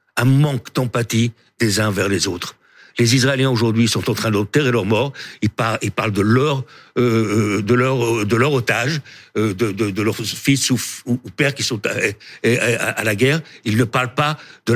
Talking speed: 175 wpm